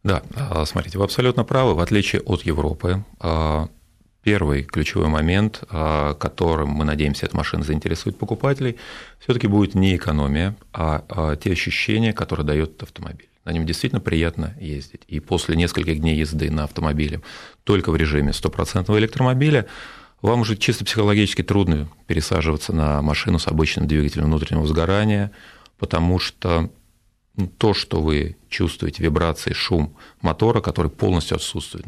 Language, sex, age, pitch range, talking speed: Russian, male, 40-59, 80-105 Hz, 135 wpm